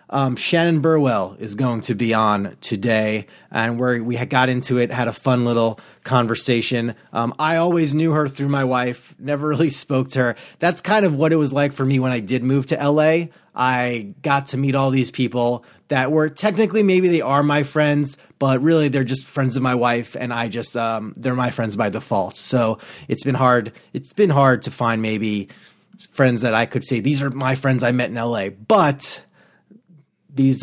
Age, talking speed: 30-49, 210 wpm